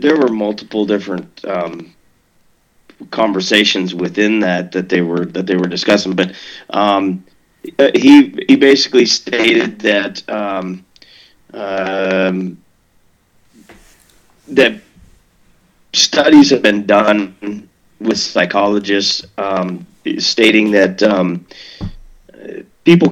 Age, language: 30-49, English